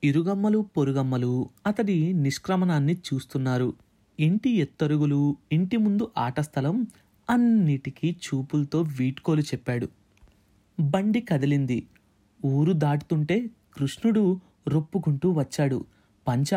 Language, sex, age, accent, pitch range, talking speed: Telugu, male, 30-49, native, 130-175 Hz, 80 wpm